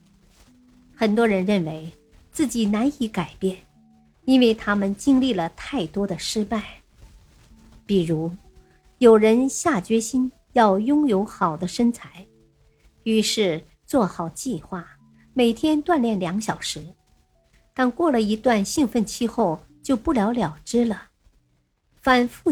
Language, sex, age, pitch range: Chinese, male, 50-69, 175-240 Hz